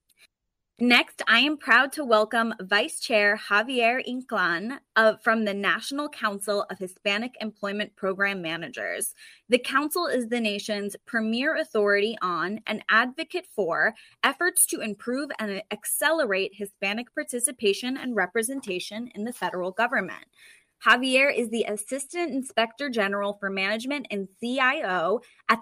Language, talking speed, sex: English, 130 wpm, female